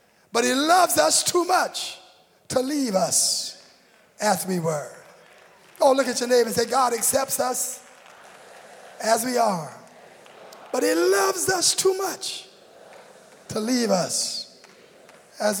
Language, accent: English, American